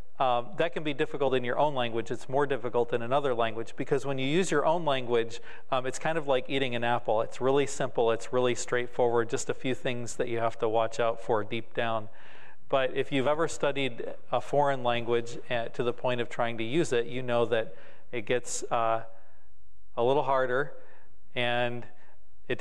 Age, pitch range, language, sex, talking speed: 40-59, 115-135 Hz, English, male, 205 wpm